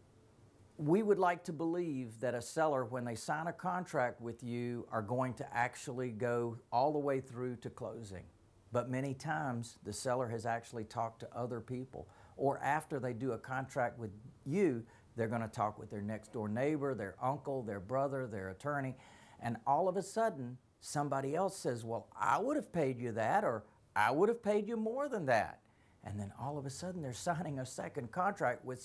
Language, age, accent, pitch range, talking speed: English, 40-59, American, 110-135 Hz, 195 wpm